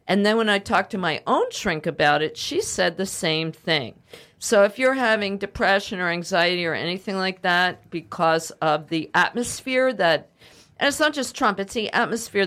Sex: female